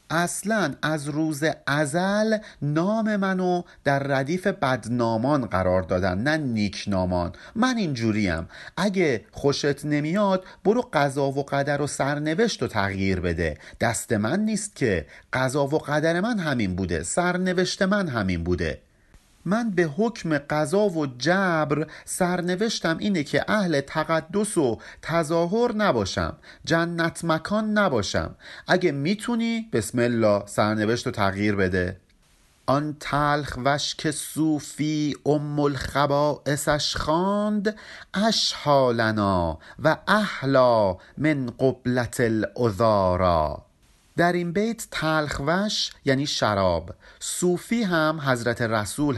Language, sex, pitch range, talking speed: Persian, male, 115-180 Hz, 110 wpm